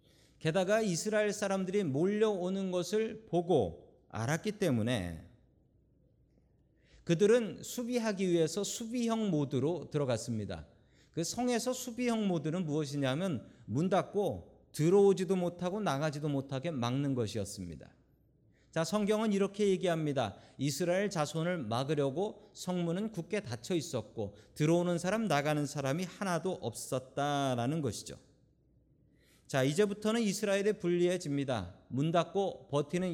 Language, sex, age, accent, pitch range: Korean, male, 40-59, native, 125-195 Hz